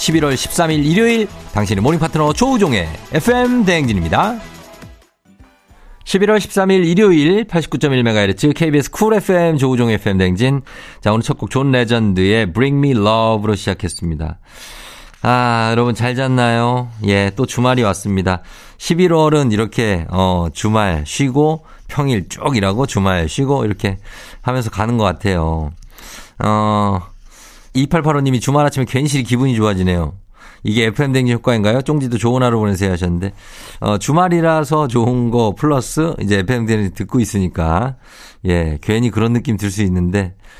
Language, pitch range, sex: Korean, 100-130 Hz, male